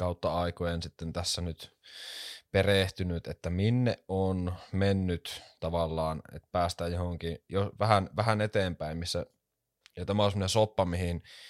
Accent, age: native, 20-39